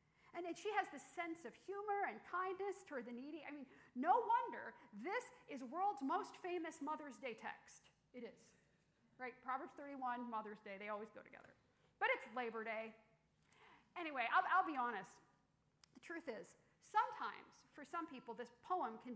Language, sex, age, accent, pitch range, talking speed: English, female, 50-69, American, 240-335 Hz, 170 wpm